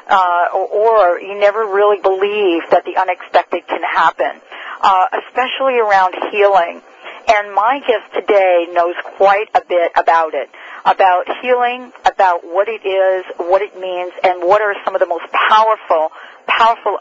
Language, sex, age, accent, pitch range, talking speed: English, female, 40-59, American, 175-205 Hz, 155 wpm